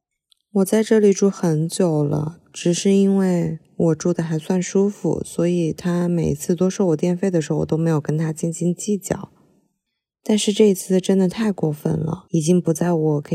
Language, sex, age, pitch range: Chinese, female, 20-39, 155-180 Hz